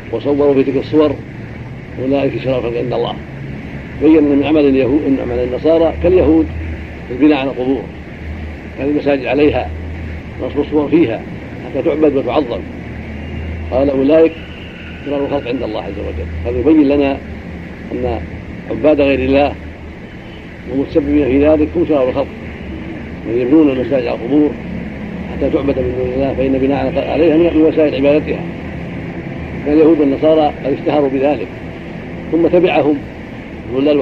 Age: 70-89